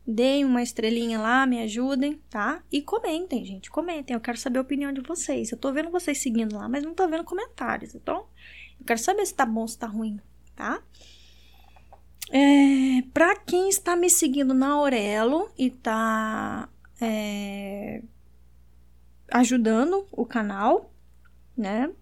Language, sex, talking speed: Portuguese, female, 145 wpm